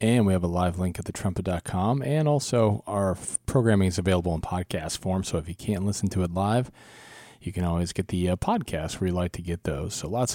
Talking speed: 230 wpm